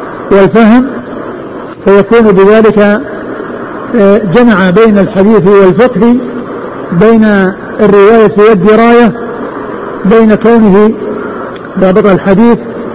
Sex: male